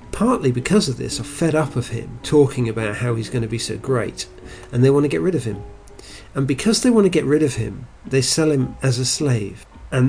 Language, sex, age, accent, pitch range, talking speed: English, male, 50-69, British, 110-130 Hz, 250 wpm